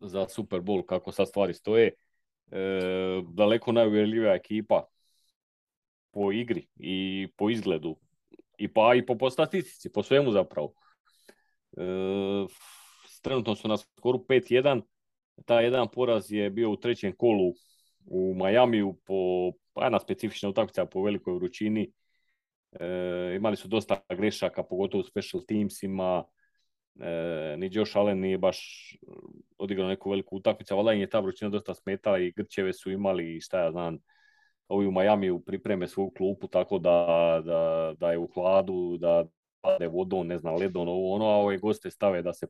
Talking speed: 150 wpm